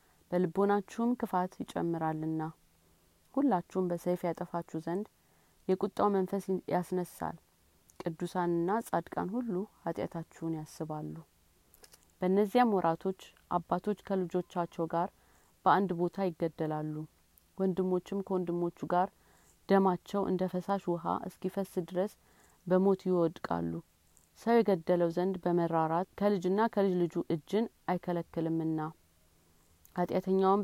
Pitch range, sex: 165-195 Hz, female